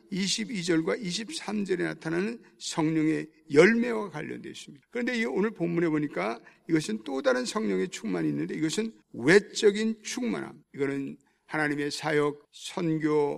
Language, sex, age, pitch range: Korean, male, 50-69, 145-220 Hz